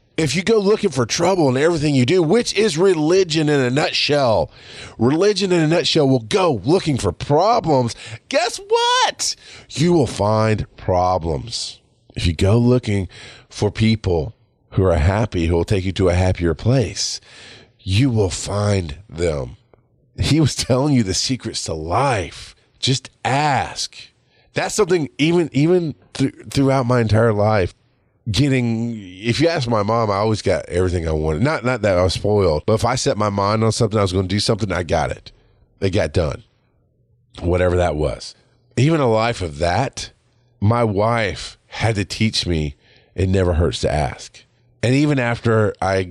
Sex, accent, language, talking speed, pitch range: male, American, English, 170 wpm, 95-130 Hz